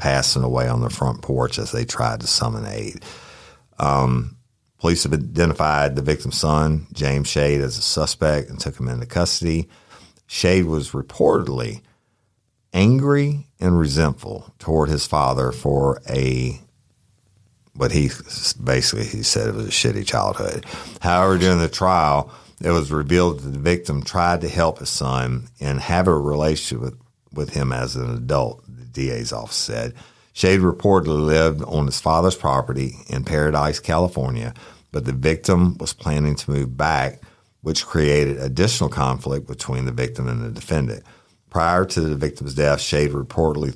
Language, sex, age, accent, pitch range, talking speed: English, male, 50-69, American, 65-85 Hz, 155 wpm